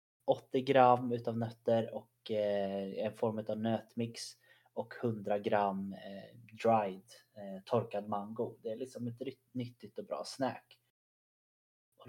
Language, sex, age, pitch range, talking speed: Swedish, male, 20-39, 100-115 Hz, 120 wpm